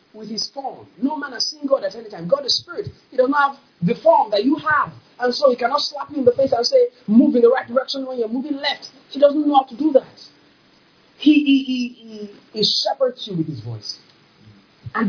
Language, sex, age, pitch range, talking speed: English, male, 40-59, 260-390 Hz, 235 wpm